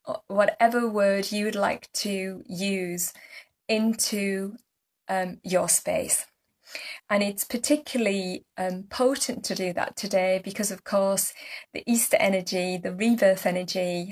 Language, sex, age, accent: English, female, 20-39, British